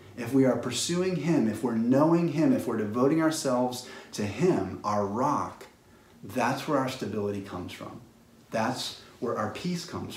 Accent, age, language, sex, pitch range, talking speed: American, 30-49, English, male, 105-135 Hz, 165 wpm